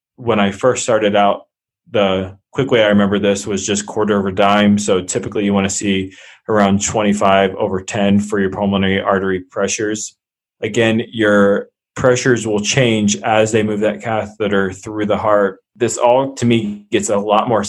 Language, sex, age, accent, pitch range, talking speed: English, male, 20-39, American, 100-110 Hz, 175 wpm